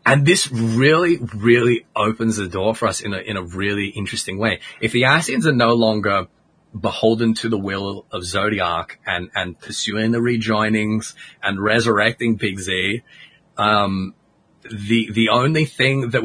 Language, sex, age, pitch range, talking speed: English, male, 30-49, 100-115 Hz, 160 wpm